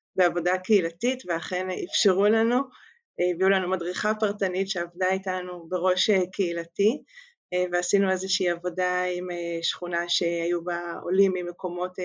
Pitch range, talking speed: 180-210 Hz, 110 wpm